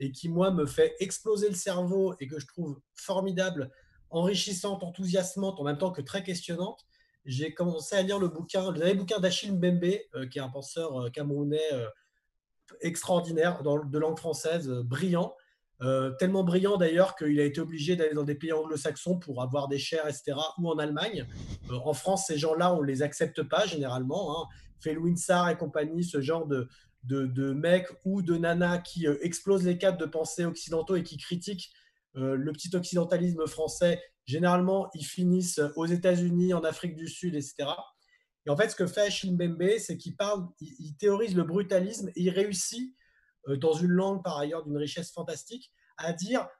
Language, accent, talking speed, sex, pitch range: French, French, 180 wpm, male, 155-190 Hz